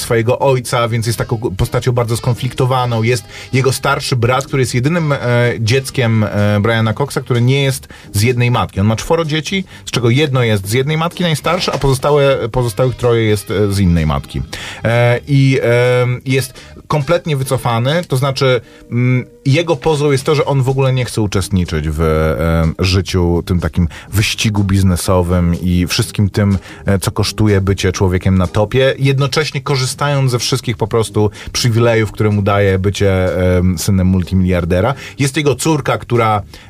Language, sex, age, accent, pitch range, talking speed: Polish, male, 30-49, native, 100-130 Hz, 165 wpm